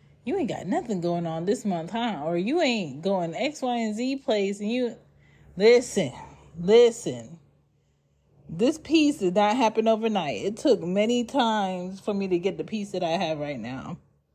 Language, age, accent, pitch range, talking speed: English, 30-49, American, 160-205 Hz, 180 wpm